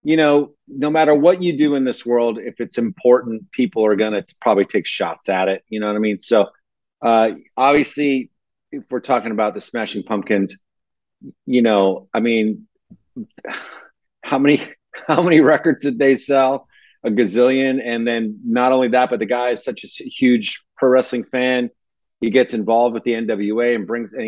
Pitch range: 110-130 Hz